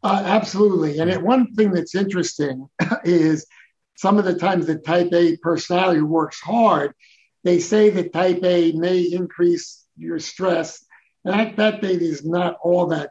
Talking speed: 165 wpm